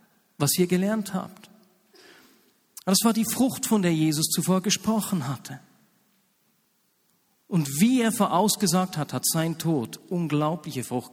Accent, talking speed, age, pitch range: German, 130 wpm, 50-69, 160-205 Hz